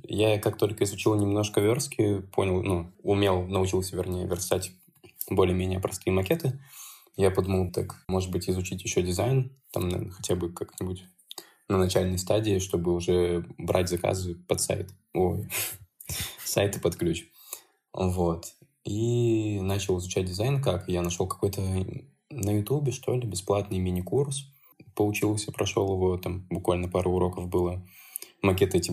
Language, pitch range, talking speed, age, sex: Russian, 90-110 Hz, 135 wpm, 20-39, male